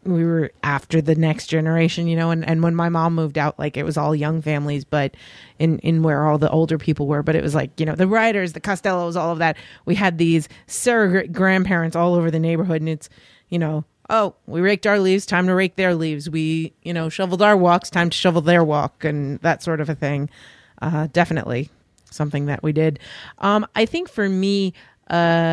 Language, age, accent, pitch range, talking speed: English, 30-49, American, 155-185 Hz, 225 wpm